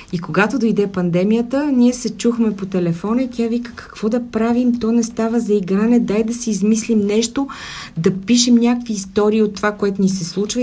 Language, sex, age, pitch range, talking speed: Bulgarian, female, 40-59, 175-235 Hz, 200 wpm